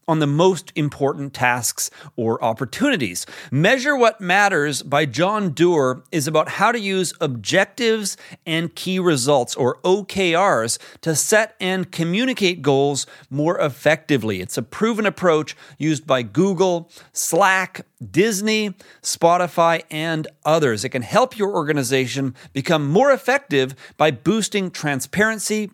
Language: English